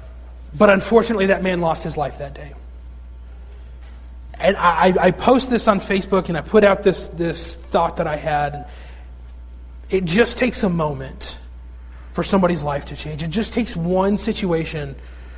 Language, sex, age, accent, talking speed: English, male, 30-49, American, 160 wpm